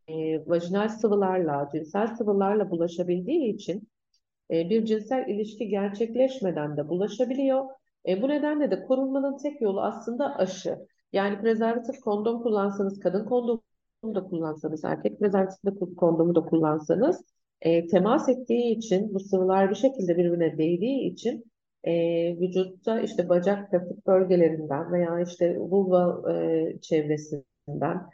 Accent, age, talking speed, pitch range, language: native, 50-69, 125 wpm, 175-220 Hz, Turkish